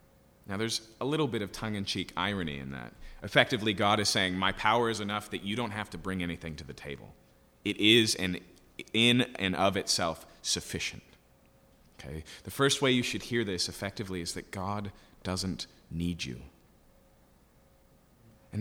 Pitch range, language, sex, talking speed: 90-110 Hz, English, male, 170 wpm